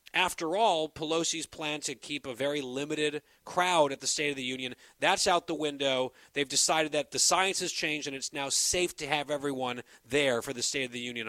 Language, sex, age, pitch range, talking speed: English, male, 30-49, 130-155 Hz, 220 wpm